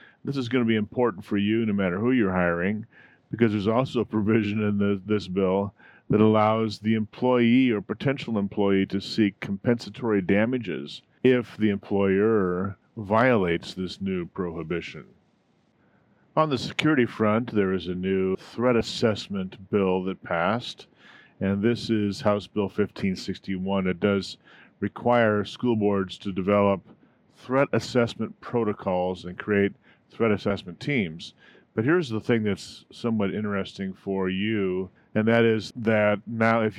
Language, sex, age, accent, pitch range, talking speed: English, male, 40-59, American, 95-115 Hz, 145 wpm